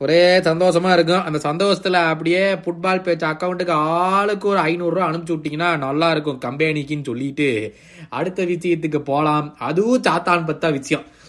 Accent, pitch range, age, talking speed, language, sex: native, 150-190 Hz, 20-39, 135 wpm, Tamil, male